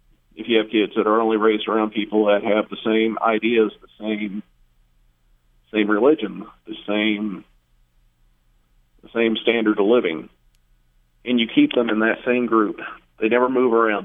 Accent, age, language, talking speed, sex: American, 40-59, English, 160 wpm, male